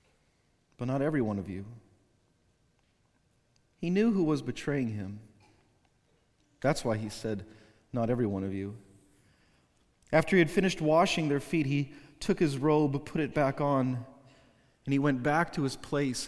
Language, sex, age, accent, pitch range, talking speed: English, male, 40-59, American, 115-155 Hz, 160 wpm